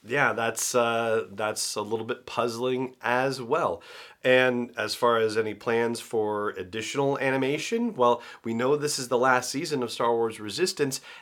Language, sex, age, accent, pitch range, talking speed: English, male, 30-49, American, 105-130 Hz, 165 wpm